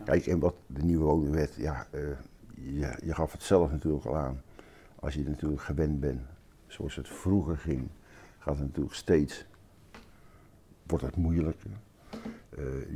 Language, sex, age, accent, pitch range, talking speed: Dutch, male, 60-79, Dutch, 75-90 Hz, 155 wpm